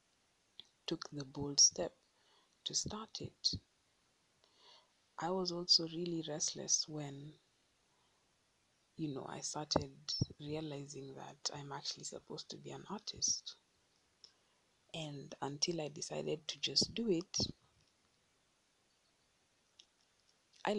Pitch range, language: 140-175 Hz, English